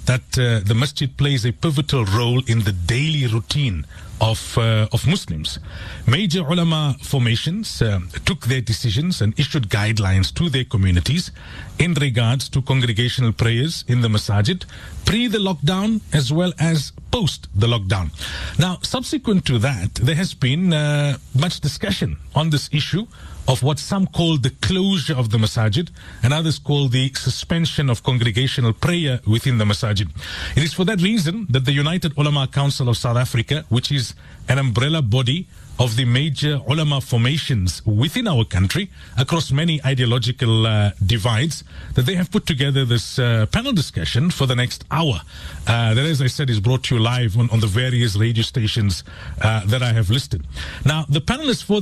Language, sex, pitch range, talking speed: English, male, 115-150 Hz, 170 wpm